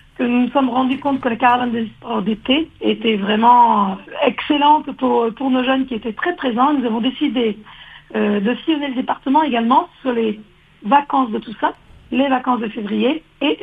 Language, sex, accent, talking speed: French, female, French, 185 wpm